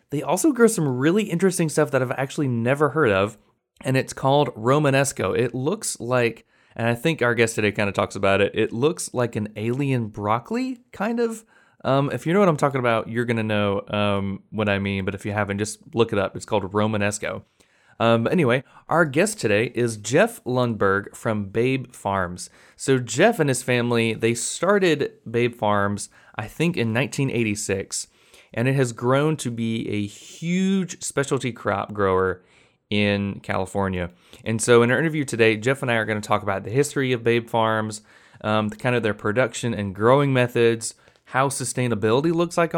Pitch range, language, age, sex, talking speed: 105-140 Hz, English, 20-39, male, 185 wpm